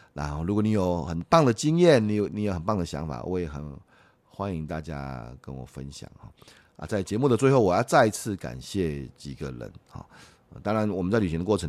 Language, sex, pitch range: Chinese, male, 75-110 Hz